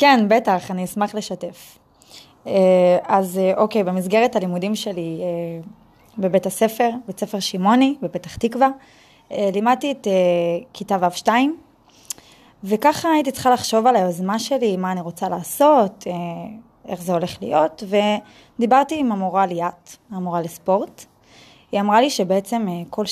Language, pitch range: Hebrew, 190-250 Hz